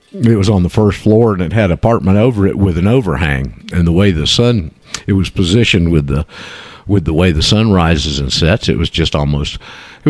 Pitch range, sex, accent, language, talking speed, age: 80-110 Hz, male, American, English, 225 wpm, 50-69